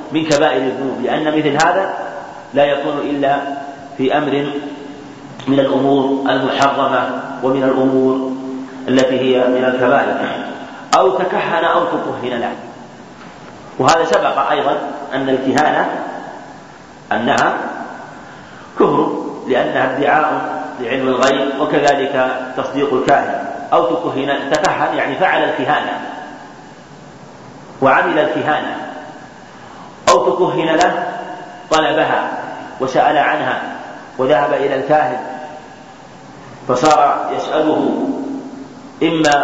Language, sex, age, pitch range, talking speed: Arabic, male, 40-59, 135-160 Hz, 90 wpm